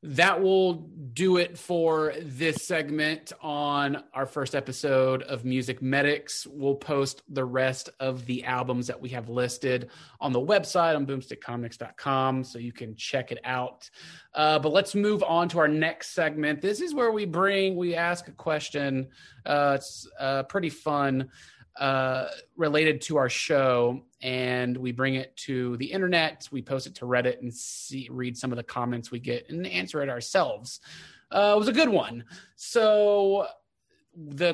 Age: 30-49